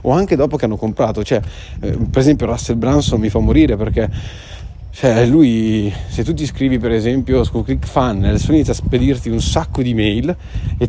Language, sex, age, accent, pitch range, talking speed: Italian, male, 30-49, native, 110-145 Hz, 185 wpm